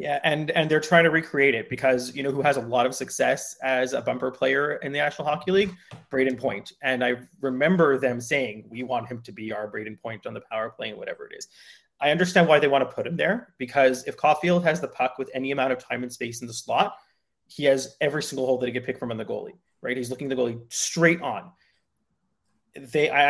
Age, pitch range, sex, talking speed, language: 30-49, 125-150 Hz, male, 245 wpm, English